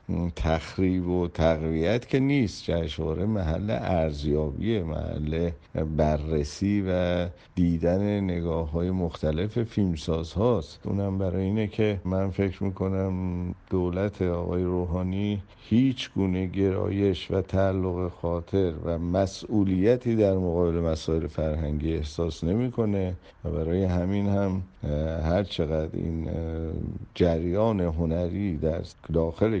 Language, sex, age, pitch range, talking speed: Persian, male, 50-69, 85-95 Hz, 100 wpm